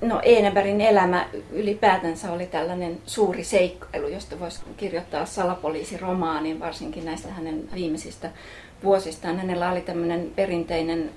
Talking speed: 100 wpm